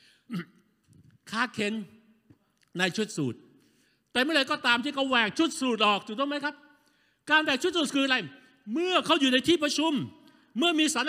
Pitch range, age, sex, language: 195-275 Hz, 60-79, male, Thai